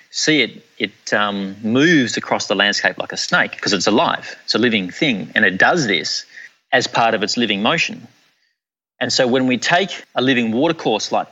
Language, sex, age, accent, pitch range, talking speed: English, male, 30-49, Australian, 110-130 Hz, 195 wpm